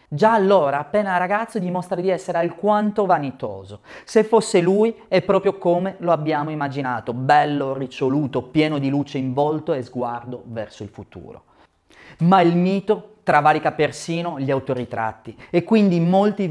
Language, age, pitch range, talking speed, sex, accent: Italian, 40-59, 135-190 Hz, 145 wpm, male, native